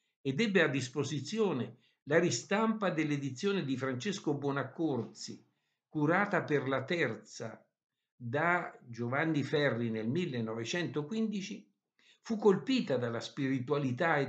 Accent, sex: native, male